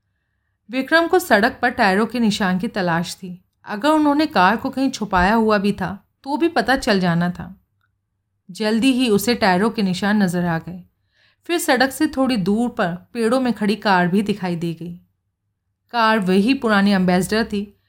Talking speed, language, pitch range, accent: 180 wpm, Hindi, 175-235 Hz, native